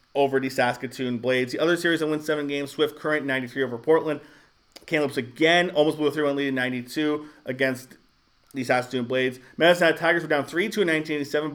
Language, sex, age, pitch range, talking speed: English, male, 40-59, 135-170 Hz, 190 wpm